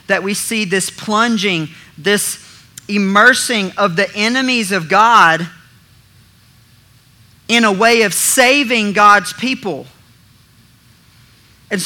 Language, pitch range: English, 140-215 Hz